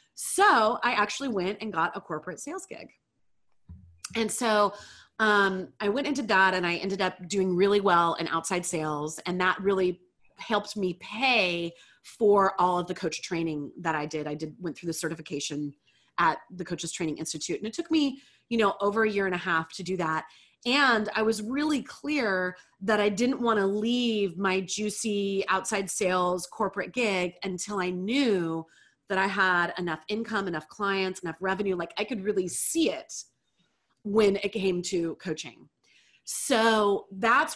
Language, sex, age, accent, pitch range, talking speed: English, female, 30-49, American, 180-225 Hz, 175 wpm